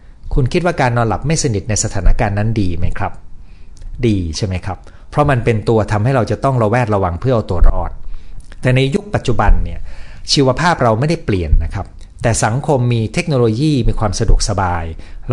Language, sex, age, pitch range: Thai, male, 60-79, 90-125 Hz